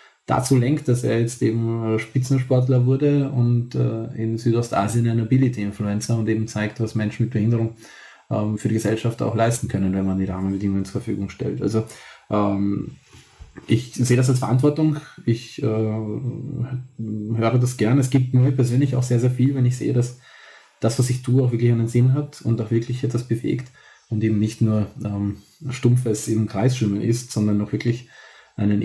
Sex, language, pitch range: male, German, 105-125 Hz